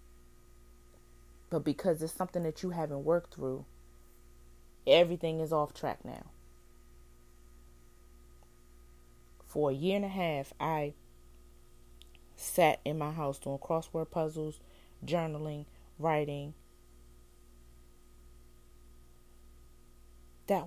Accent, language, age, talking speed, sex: American, English, 30-49, 90 wpm, female